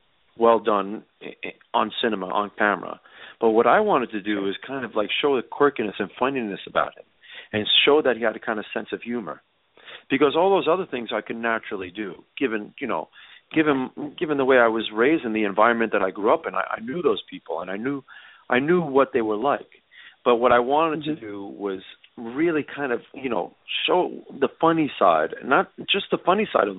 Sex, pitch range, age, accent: male, 115-155 Hz, 40-59, American